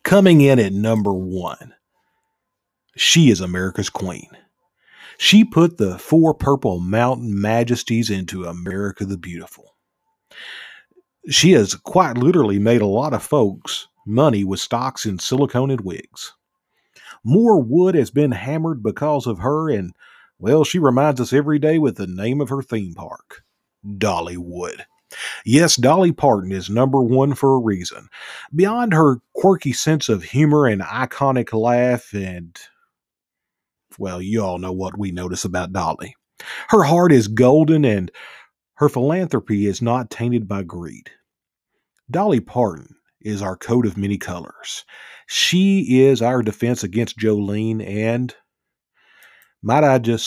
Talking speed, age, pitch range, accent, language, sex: 140 wpm, 40-59, 100-140 Hz, American, English, male